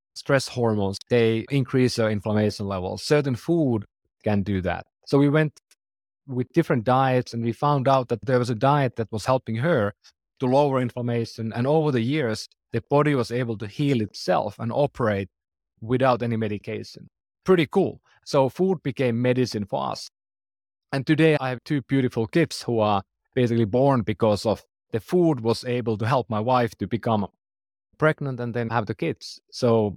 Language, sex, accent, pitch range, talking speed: English, male, Finnish, 110-135 Hz, 175 wpm